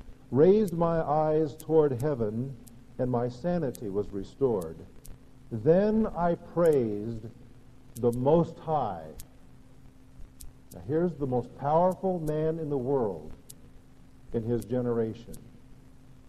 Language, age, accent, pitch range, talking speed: English, 50-69, American, 115-150 Hz, 105 wpm